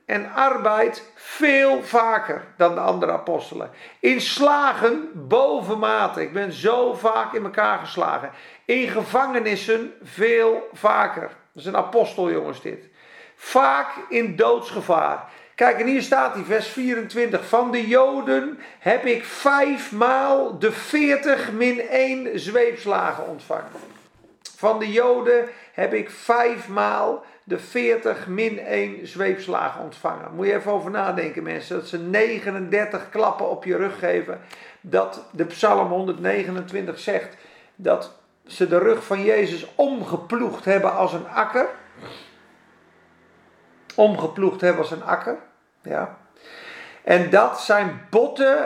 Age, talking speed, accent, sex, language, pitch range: 40-59, 130 wpm, Dutch, male, Dutch, 190-255 Hz